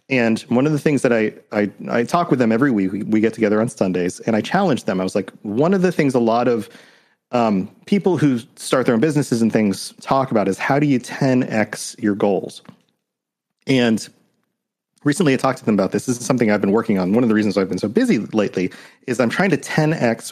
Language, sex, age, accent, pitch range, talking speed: English, male, 40-59, American, 110-135 Hz, 235 wpm